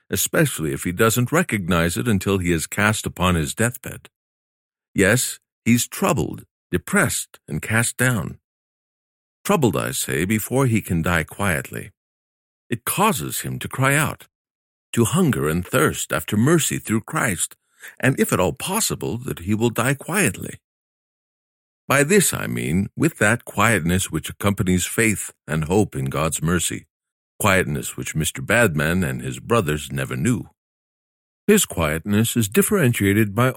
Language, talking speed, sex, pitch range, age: English, 145 wpm, male, 85-125 Hz, 50-69